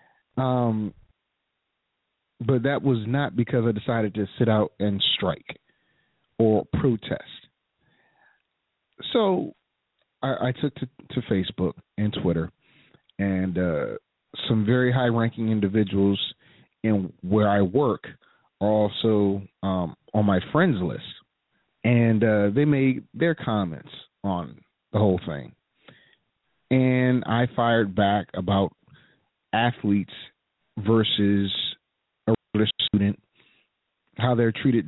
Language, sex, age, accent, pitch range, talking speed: English, male, 40-59, American, 100-120 Hz, 110 wpm